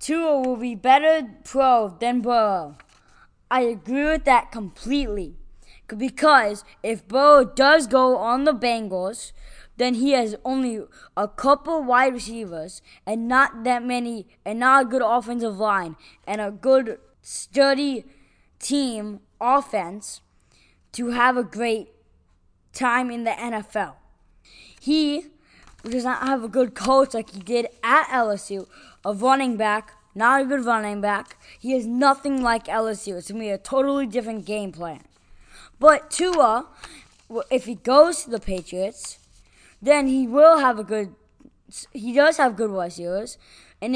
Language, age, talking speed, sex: English, 20-39, 145 wpm, female